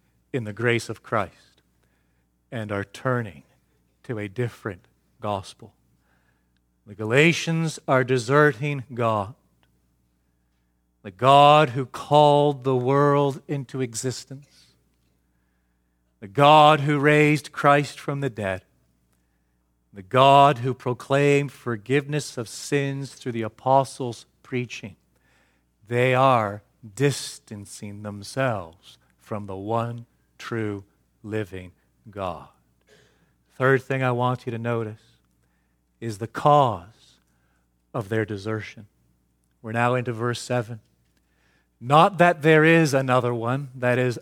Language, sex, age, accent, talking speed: English, male, 40-59, American, 110 wpm